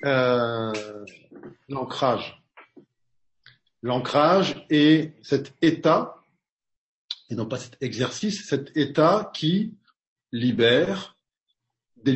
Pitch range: 125-175 Hz